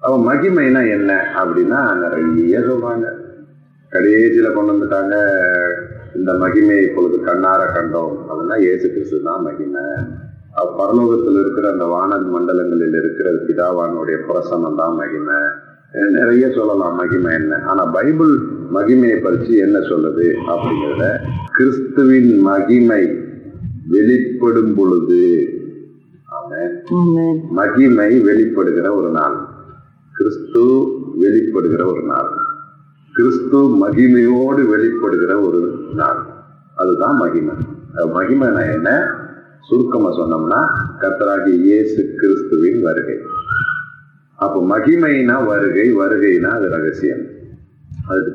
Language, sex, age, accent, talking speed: Tamil, male, 30-49, native, 90 wpm